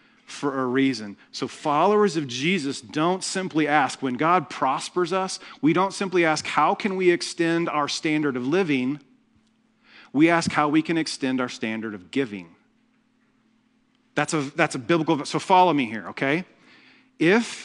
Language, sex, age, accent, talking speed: English, male, 40-59, American, 160 wpm